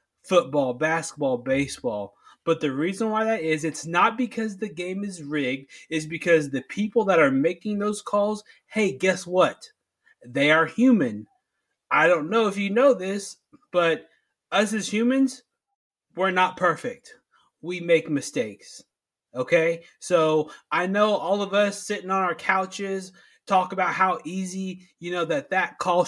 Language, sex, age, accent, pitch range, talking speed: English, male, 20-39, American, 165-210 Hz, 155 wpm